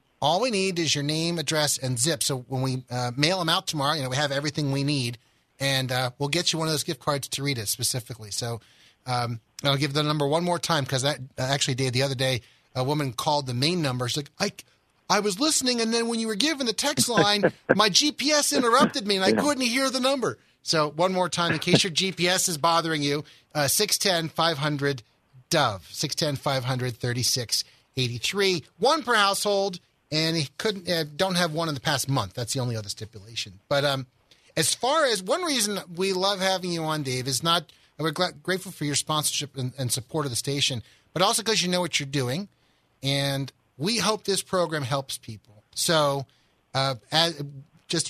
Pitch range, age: 130-180 Hz, 30-49